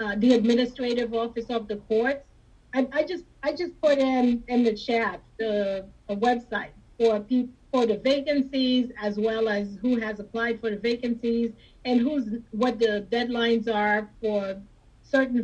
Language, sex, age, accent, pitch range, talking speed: English, female, 30-49, American, 215-245 Hz, 165 wpm